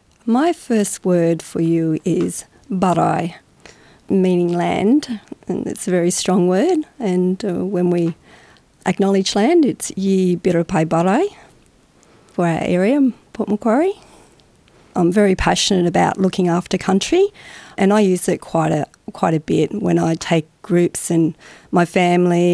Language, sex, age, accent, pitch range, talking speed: English, female, 40-59, Australian, 170-200 Hz, 140 wpm